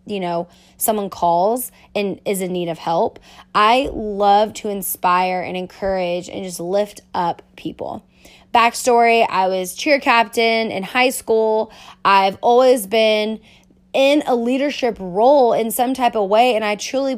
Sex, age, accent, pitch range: female, 20-39, American, 195-245 Hz